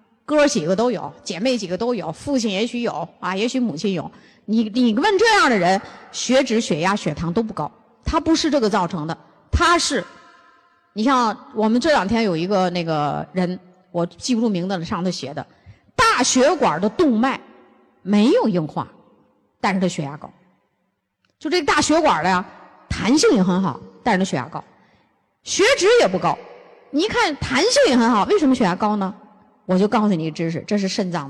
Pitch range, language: 190-280 Hz, Chinese